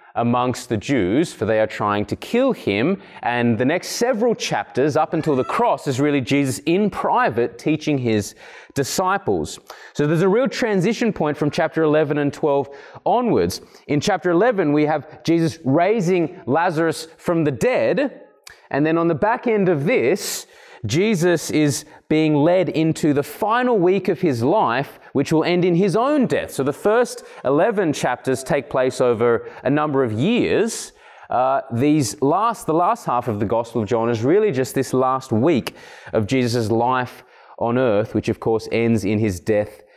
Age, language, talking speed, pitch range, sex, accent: 20-39, English, 175 wpm, 130-185 Hz, male, Australian